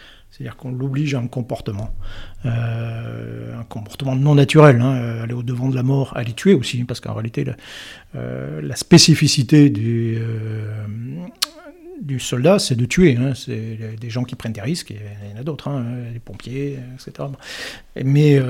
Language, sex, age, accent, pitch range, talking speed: French, male, 50-69, French, 120-150 Hz, 170 wpm